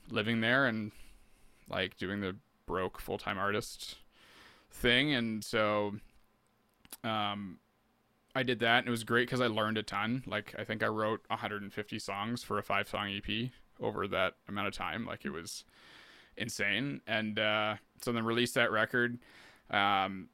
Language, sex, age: English, male, 20-39